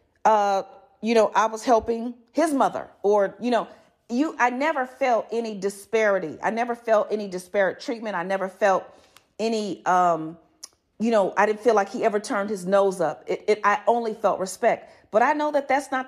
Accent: American